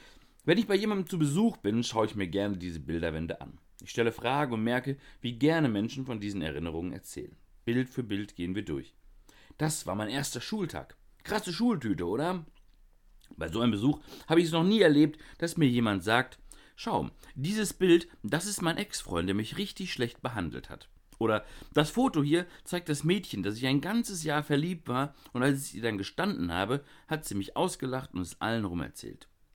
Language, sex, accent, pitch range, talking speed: German, male, German, 100-155 Hz, 195 wpm